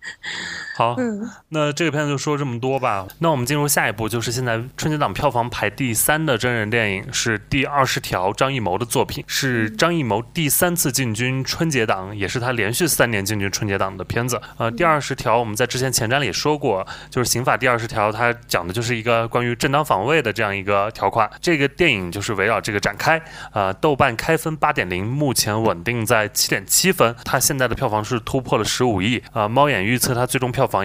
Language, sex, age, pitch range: Chinese, male, 20-39, 110-140 Hz